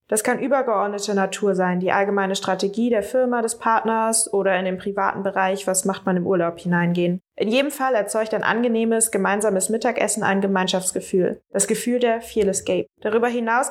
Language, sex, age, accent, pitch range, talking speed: Danish, female, 20-39, German, 195-245 Hz, 175 wpm